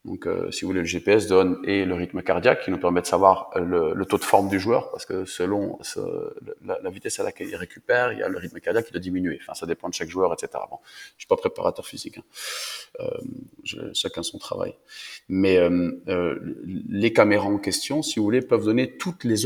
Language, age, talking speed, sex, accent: French, 30-49, 235 wpm, male, French